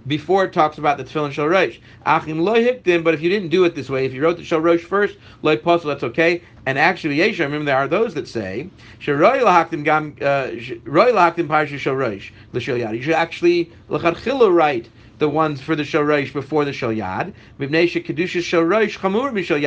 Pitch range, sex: 130-170 Hz, male